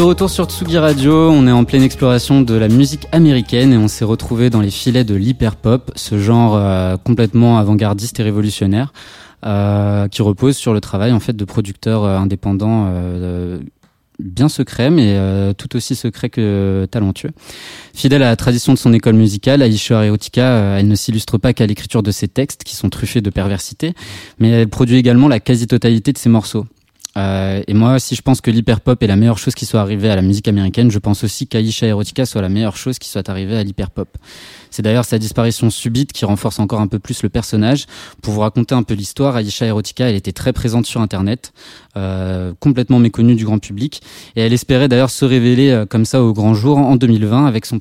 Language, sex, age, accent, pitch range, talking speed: French, male, 20-39, French, 105-125 Hz, 210 wpm